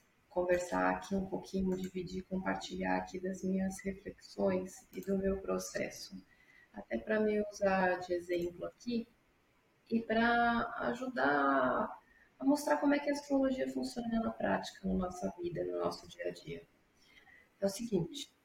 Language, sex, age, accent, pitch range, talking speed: Portuguese, female, 30-49, Brazilian, 175-230 Hz, 150 wpm